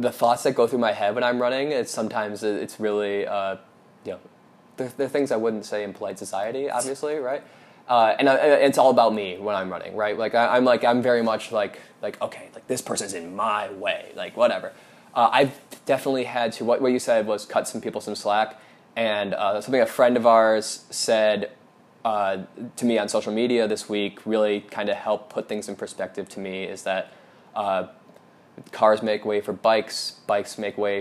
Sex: male